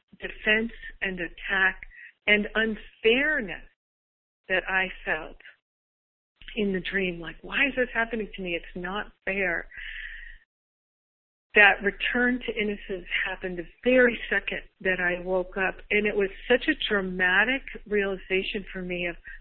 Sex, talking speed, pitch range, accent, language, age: female, 135 wpm, 185-225 Hz, American, English, 50-69